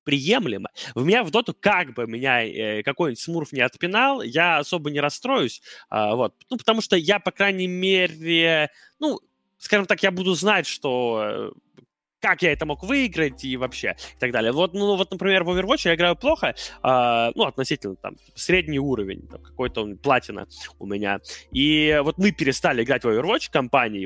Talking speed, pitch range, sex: 180 wpm, 130-195 Hz, male